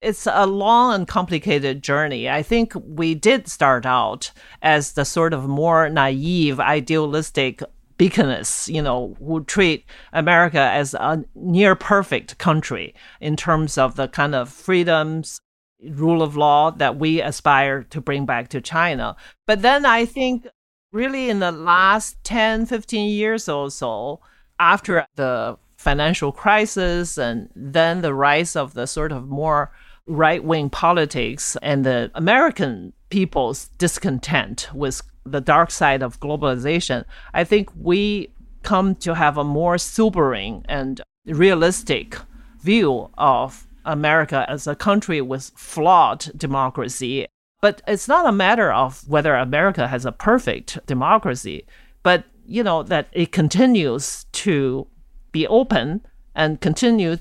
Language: English